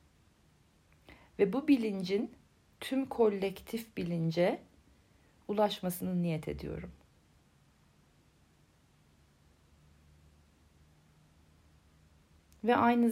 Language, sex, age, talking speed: Turkish, female, 40-59, 50 wpm